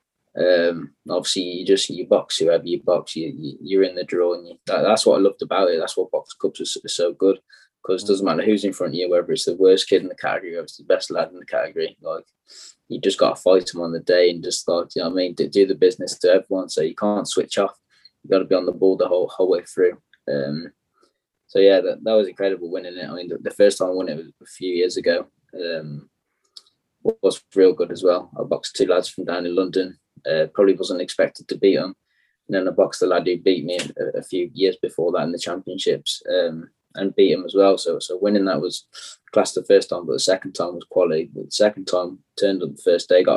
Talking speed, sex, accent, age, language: 260 wpm, male, British, 20-39, English